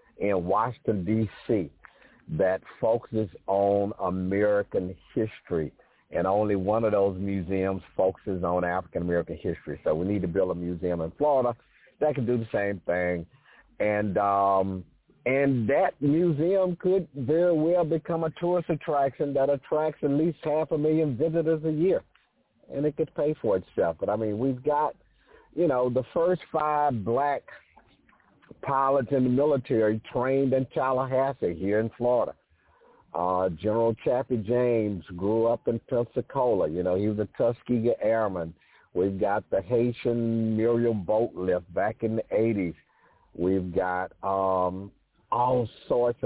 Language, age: English, 50-69